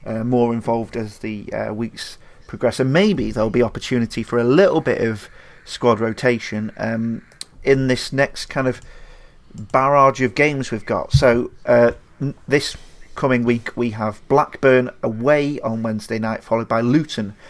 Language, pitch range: English, 110-125 Hz